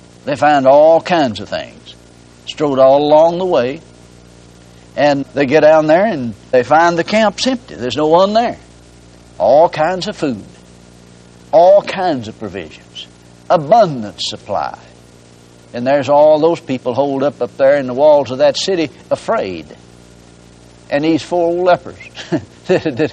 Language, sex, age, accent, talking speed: English, male, 60-79, American, 150 wpm